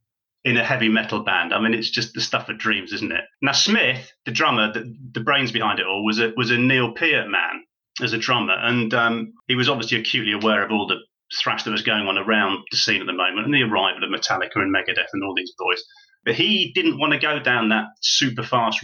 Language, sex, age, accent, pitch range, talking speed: English, male, 30-49, British, 110-140 Hz, 240 wpm